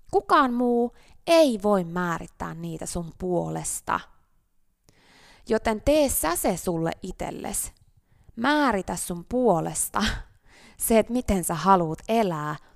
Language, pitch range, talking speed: Finnish, 170-275 Hz, 110 wpm